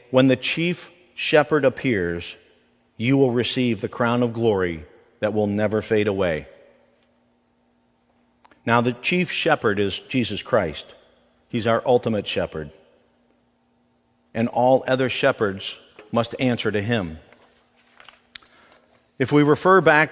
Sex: male